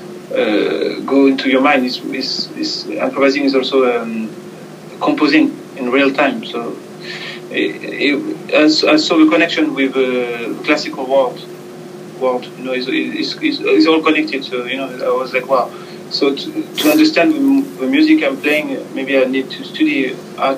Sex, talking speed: male, 170 wpm